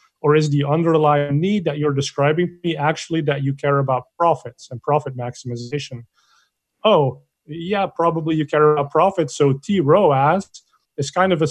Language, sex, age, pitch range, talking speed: English, male, 30-49, 135-165 Hz, 175 wpm